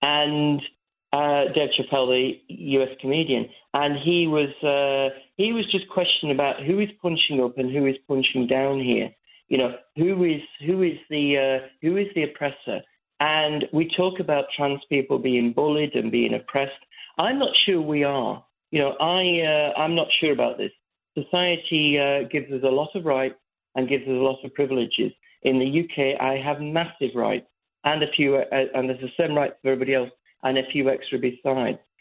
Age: 40-59